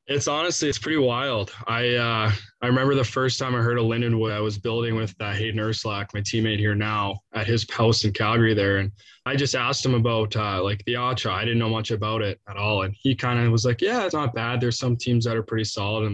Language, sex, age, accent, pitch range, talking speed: English, male, 20-39, American, 105-120 Hz, 255 wpm